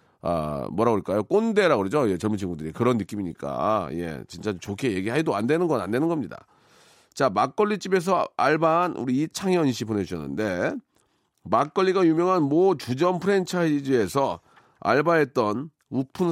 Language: Korean